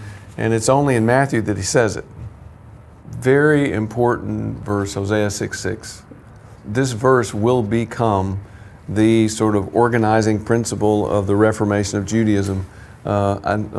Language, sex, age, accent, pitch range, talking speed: English, male, 50-69, American, 100-120 Hz, 140 wpm